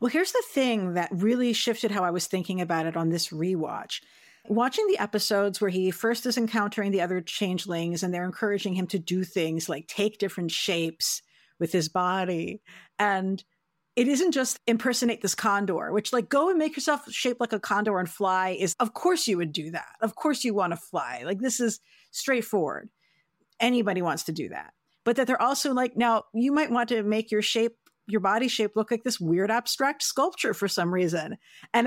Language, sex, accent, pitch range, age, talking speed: English, female, American, 185-250 Hz, 50-69, 205 wpm